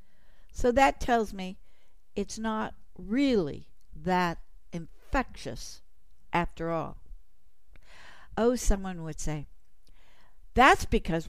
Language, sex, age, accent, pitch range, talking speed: English, female, 60-79, American, 165-220 Hz, 90 wpm